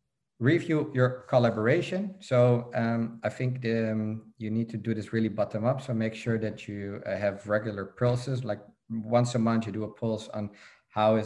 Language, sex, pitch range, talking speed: English, male, 105-125 Hz, 190 wpm